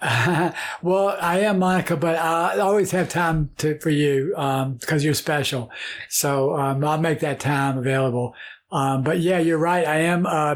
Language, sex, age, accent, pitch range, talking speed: English, male, 60-79, American, 145-165 Hz, 175 wpm